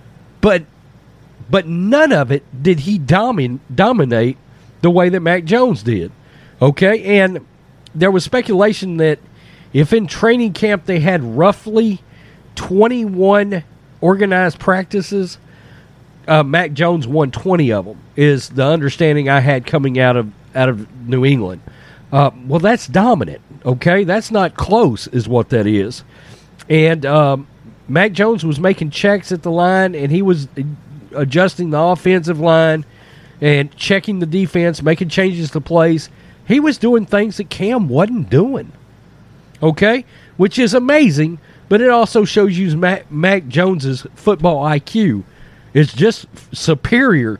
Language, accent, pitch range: English, American, 140-190 Hz